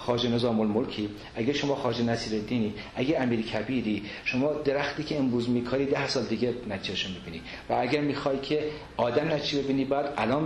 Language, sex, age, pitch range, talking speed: Persian, male, 40-59, 105-135 Hz, 170 wpm